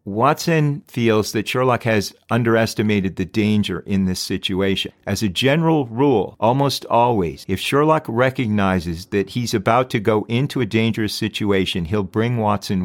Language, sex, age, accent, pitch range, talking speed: English, male, 50-69, American, 100-125 Hz, 150 wpm